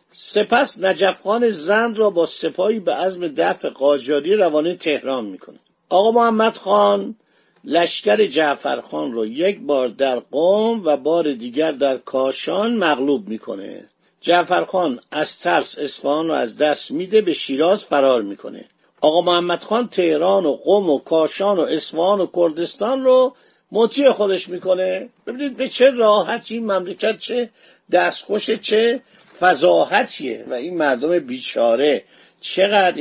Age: 50-69